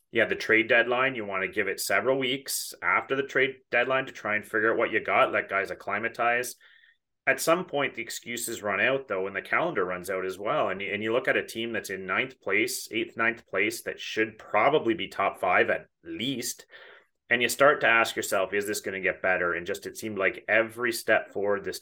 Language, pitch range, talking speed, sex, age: English, 95-130 Hz, 235 wpm, male, 30-49